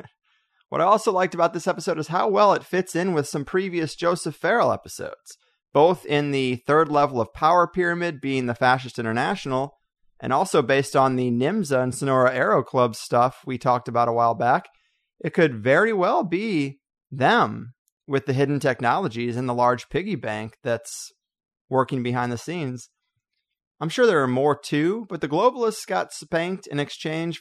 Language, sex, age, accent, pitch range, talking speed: English, male, 30-49, American, 125-170 Hz, 175 wpm